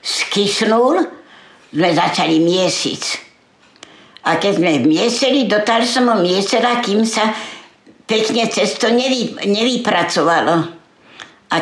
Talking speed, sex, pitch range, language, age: 100 wpm, female, 190-235 Hz, Slovak, 60-79